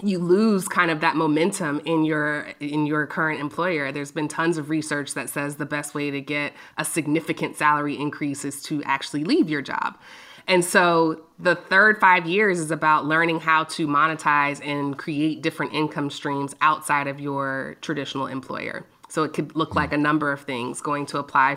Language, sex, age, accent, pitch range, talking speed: English, female, 20-39, American, 145-180 Hz, 190 wpm